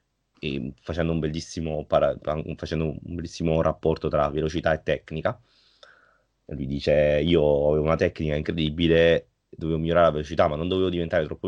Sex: male